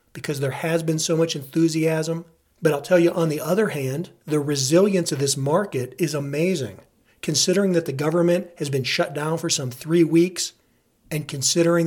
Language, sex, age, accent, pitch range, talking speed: English, male, 40-59, American, 150-170 Hz, 180 wpm